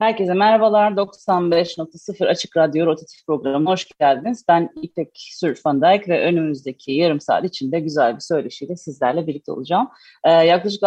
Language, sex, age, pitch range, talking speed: Turkish, female, 30-49, 150-180 Hz, 130 wpm